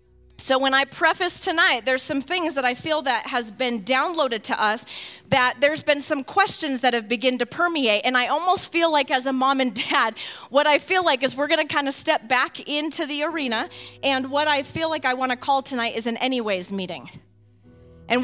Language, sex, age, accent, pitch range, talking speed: English, female, 30-49, American, 250-315 Hz, 220 wpm